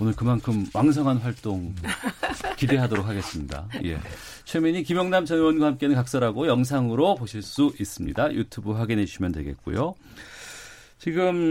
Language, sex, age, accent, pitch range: Korean, male, 40-59, native, 100-145 Hz